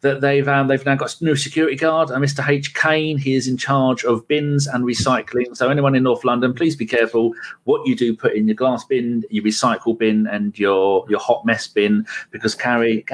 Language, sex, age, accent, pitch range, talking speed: English, male, 40-59, British, 115-145 Hz, 230 wpm